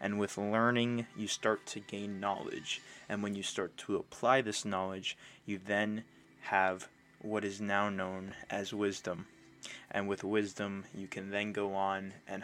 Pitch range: 100-110 Hz